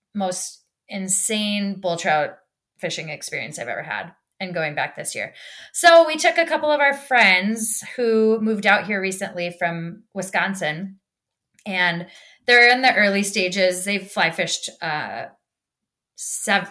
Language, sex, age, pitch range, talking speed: English, female, 20-39, 165-210 Hz, 145 wpm